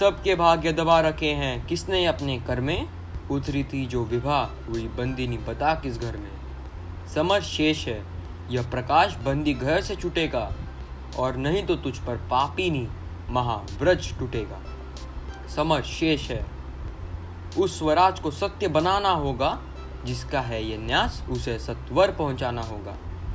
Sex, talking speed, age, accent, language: male, 145 wpm, 20-39, native, Hindi